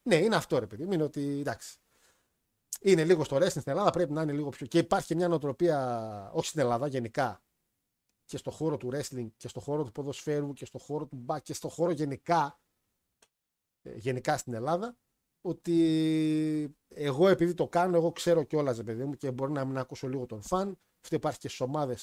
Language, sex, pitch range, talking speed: Greek, male, 125-170 Hz, 195 wpm